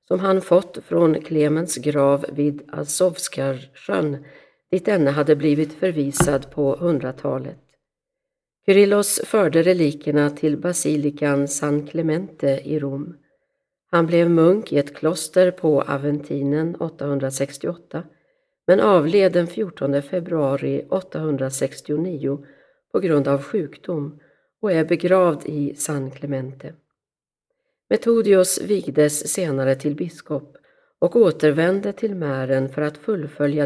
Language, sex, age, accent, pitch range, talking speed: Swedish, female, 50-69, native, 140-180 Hz, 110 wpm